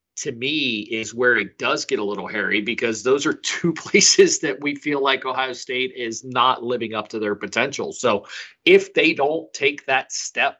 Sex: male